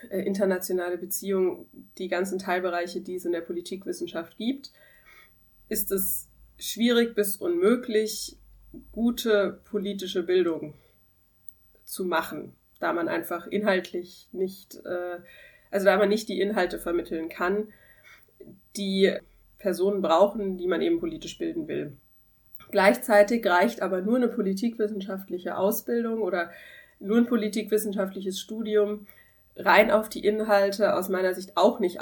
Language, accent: German, German